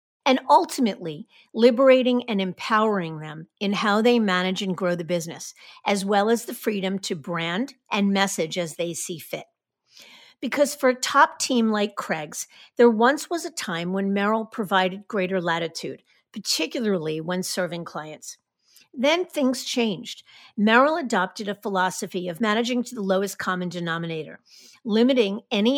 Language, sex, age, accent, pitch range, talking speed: English, female, 50-69, American, 180-235 Hz, 150 wpm